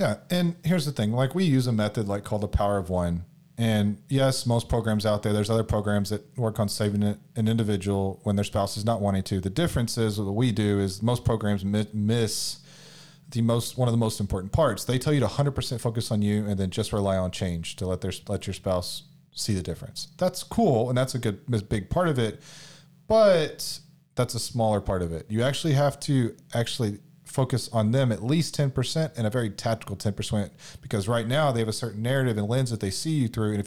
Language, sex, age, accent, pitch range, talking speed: English, male, 30-49, American, 105-155 Hz, 235 wpm